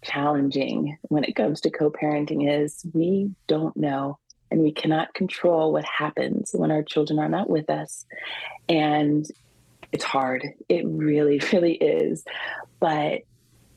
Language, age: English, 30-49